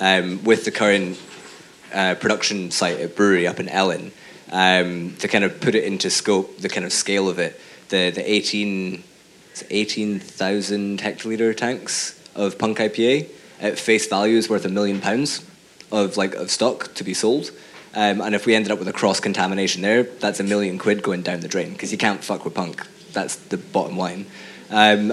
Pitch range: 95-105 Hz